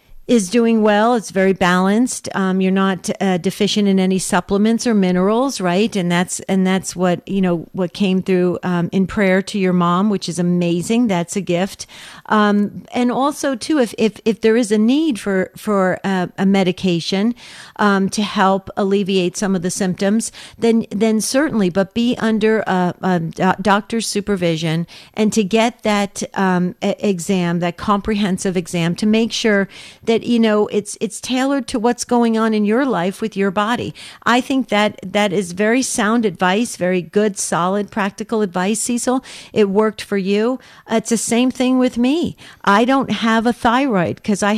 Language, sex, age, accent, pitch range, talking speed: English, female, 50-69, American, 185-225 Hz, 180 wpm